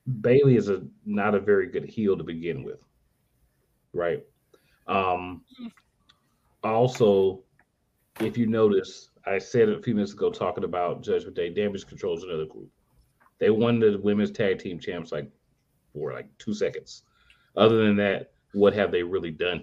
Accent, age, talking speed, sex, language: American, 30-49, 160 wpm, male, English